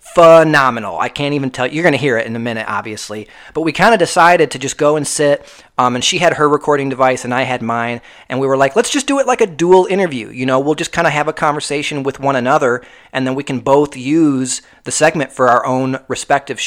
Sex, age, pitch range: male, 30-49, 120-160 Hz